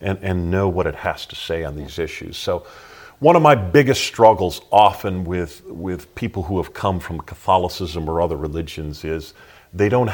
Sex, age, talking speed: male, 40-59, 190 wpm